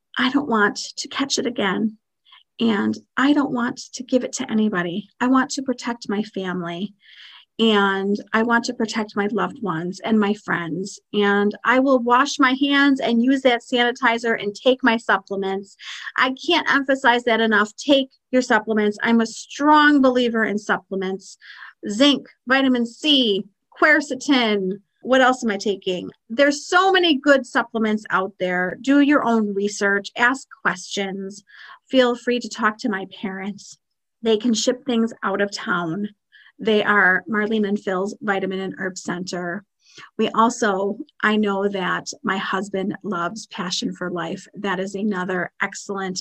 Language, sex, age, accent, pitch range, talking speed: English, female, 40-59, American, 195-250 Hz, 155 wpm